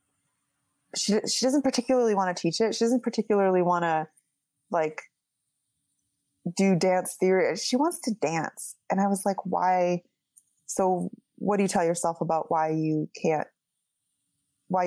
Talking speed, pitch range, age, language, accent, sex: 150 wpm, 165-205 Hz, 20-39, English, American, female